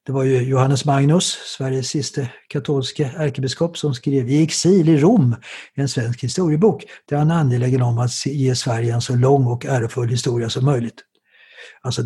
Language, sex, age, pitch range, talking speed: English, male, 60-79, 125-165 Hz, 170 wpm